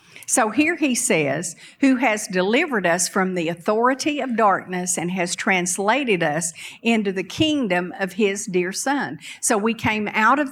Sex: female